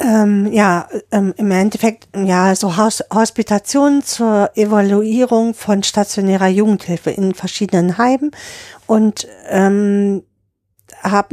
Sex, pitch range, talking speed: female, 195-225 Hz, 90 wpm